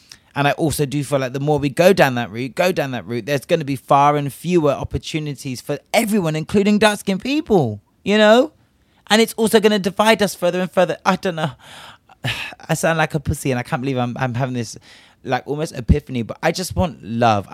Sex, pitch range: male, 115-160 Hz